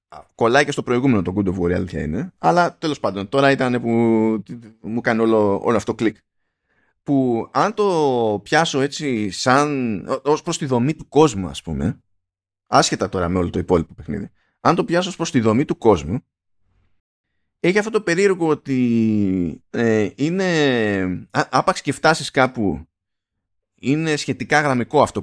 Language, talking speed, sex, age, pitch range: Greek, 155 wpm, male, 20-39, 95-140 Hz